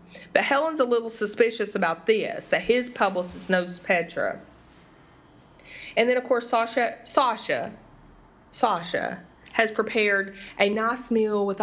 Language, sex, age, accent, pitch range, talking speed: English, female, 30-49, American, 185-220 Hz, 130 wpm